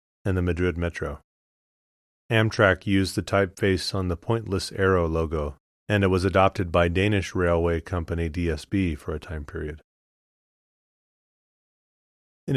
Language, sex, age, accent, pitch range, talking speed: English, male, 30-49, American, 80-100 Hz, 130 wpm